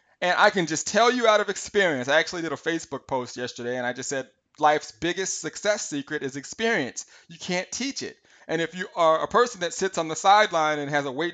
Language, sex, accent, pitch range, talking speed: English, male, American, 150-190 Hz, 240 wpm